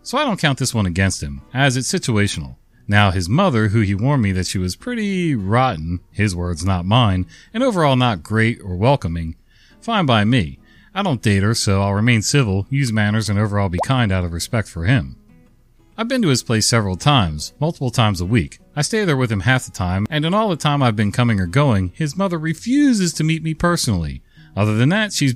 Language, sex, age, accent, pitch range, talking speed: English, male, 40-59, American, 95-145 Hz, 225 wpm